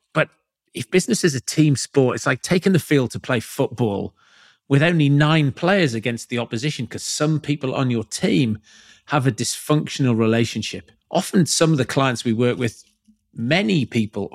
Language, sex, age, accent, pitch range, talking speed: English, male, 40-59, British, 115-150 Hz, 175 wpm